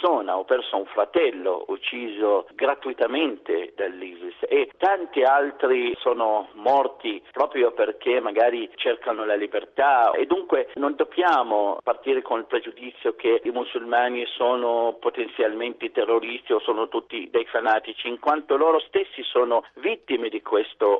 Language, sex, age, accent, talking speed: Italian, male, 50-69, native, 130 wpm